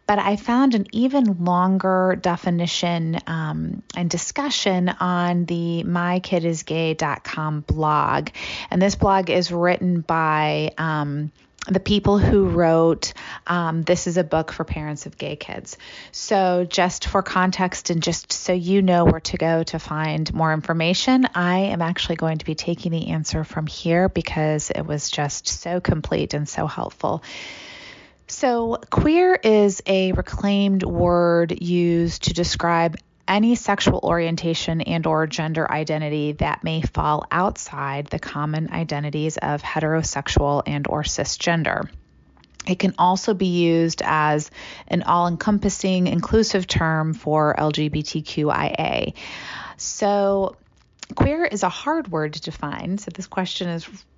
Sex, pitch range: female, 155-190 Hz